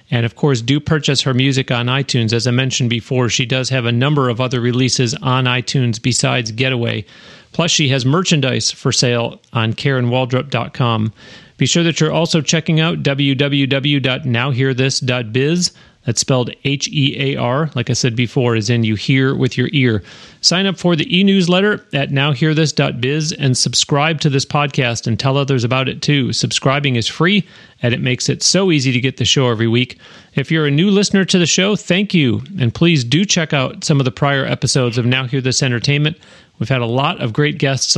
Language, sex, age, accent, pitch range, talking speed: English, male, 40-59, American, 125-145 Hz, 190 wpm